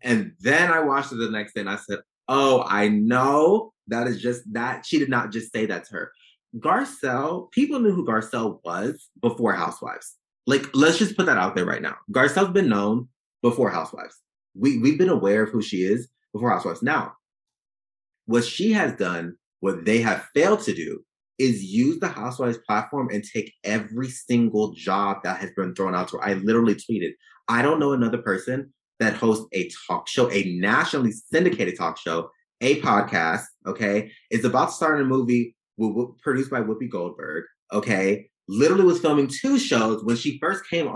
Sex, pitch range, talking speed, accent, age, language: male, 105-150 Hz, 190 wpm, American, 30-49, English